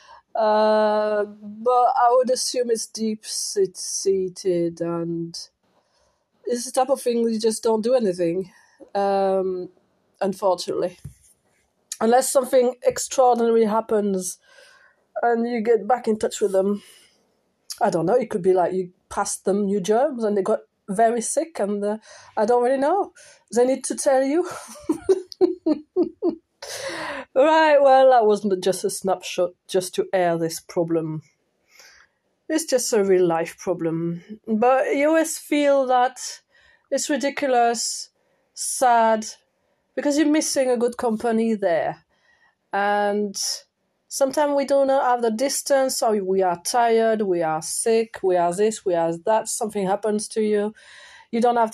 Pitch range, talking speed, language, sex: 200-265 Hz, 140 wpm, English, female